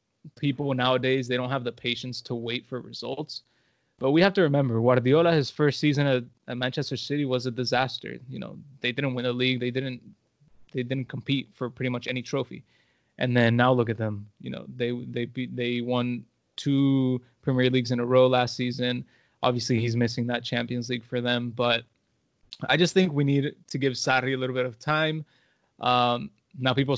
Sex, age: male, 20-39